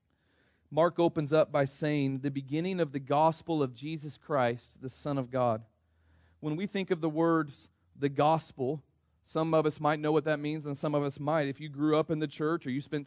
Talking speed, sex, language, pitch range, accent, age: 220 wpm, male, English, 140-160 Hz, American, 40-59